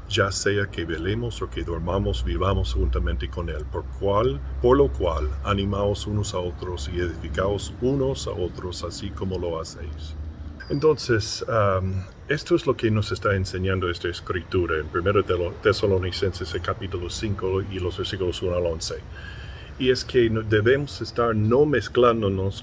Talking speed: 160 wpm